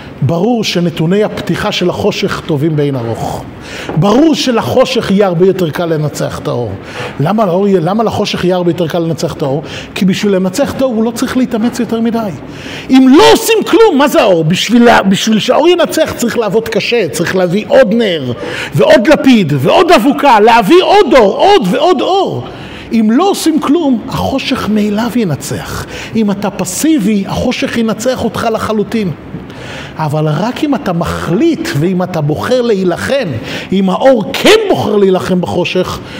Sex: male